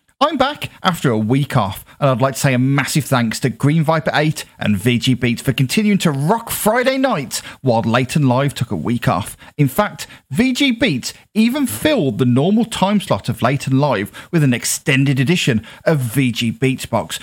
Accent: British